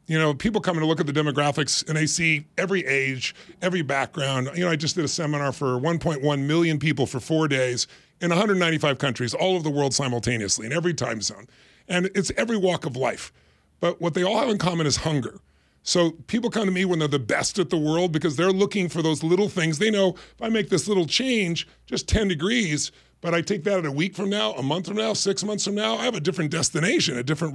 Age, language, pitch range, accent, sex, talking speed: 40-59, English, 145-185 Hz, American, female, 240 wpm